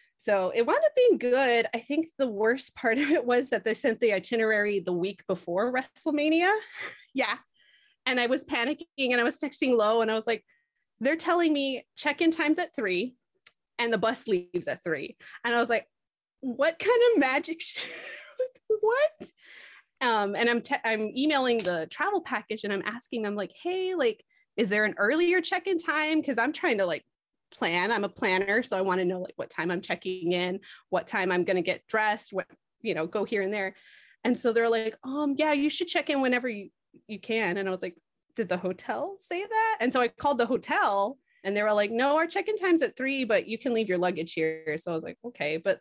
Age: 20-39